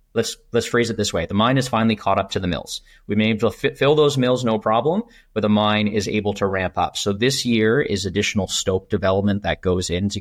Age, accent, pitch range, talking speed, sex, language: 30-49, American, 95-110 Hz, 265 wpm, male, English